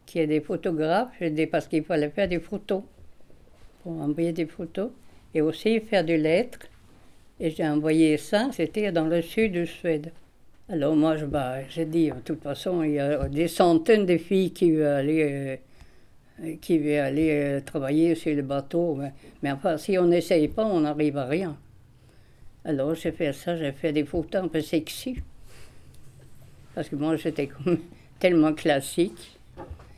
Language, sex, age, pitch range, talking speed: French, female, 60-79, 145-175 Hz, 175 wpm